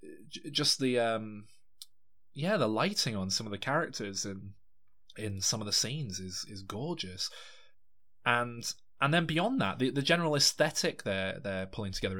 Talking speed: 165 wpm